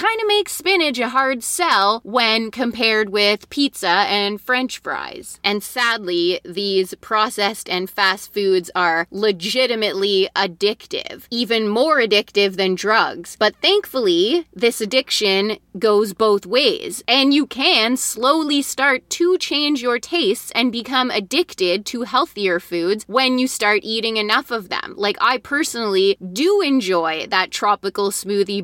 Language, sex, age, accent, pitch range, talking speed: English, female, 20-39, American, 200-265 Hz, 140 wpm